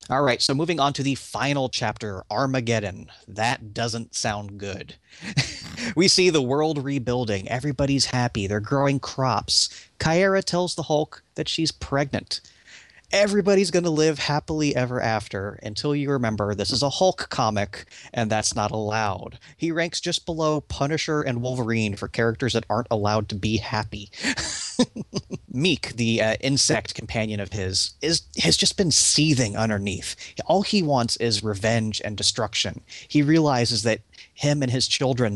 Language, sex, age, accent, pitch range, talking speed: English, male, 30-49, American, 105-145 Hz, 155 wpm